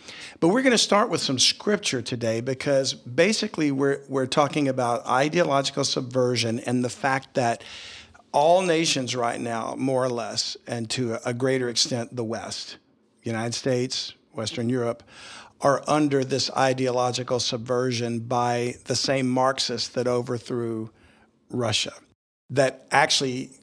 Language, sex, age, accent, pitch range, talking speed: English, male, 50-69, American, 120-140 Hz, 135 wpm